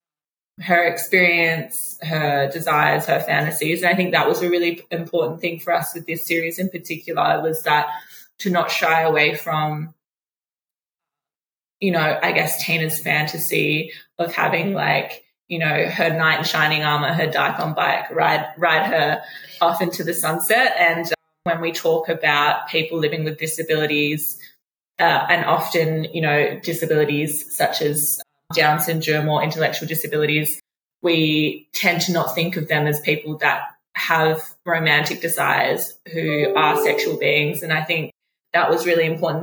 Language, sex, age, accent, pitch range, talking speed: English, female, 20-39, Australian, 155-175 Hz, 155 wpm